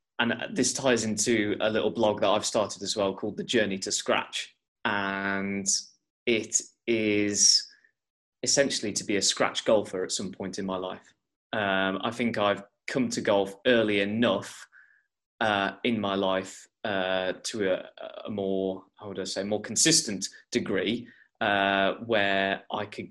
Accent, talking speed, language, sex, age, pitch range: British, 160 wpm, English, male, 20-39, 95-110 Hz